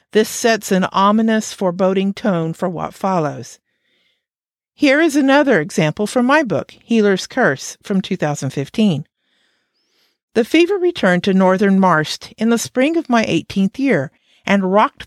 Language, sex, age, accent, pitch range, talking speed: English, female, 50-69, American, 175-230 Hz, 140 wpm